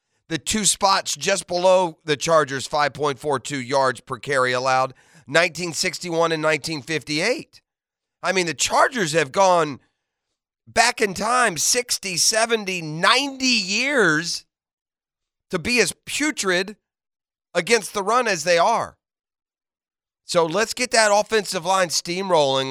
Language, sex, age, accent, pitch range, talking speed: English, male, 40-59, American, 145-195 Hz, 120 wpm